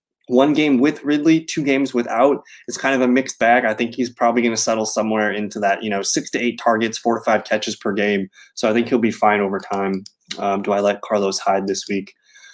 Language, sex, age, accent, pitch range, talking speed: English, male, 20-39, American, 110-145 Hz, 245 wpm